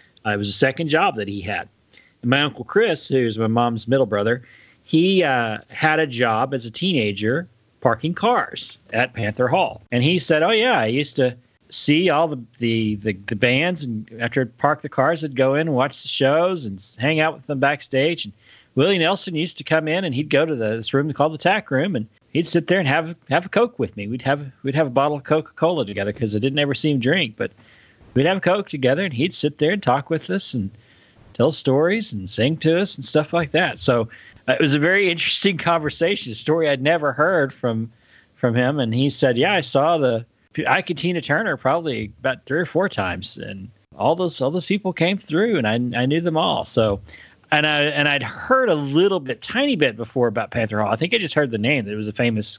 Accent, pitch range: American, 115-160 Hz